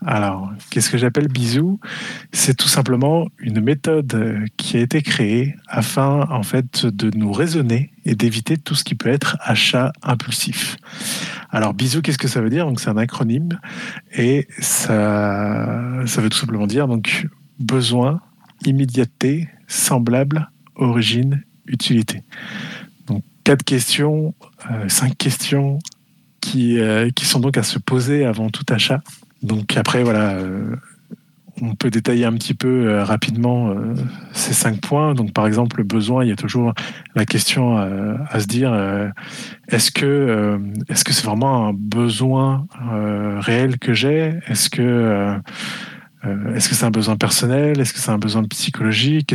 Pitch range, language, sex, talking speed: 110-145 Hz, French, male, 160 wpm